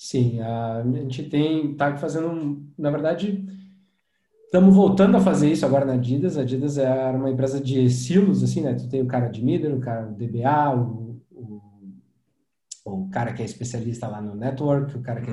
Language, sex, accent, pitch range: English, male, Brazilian, 125-155 Hz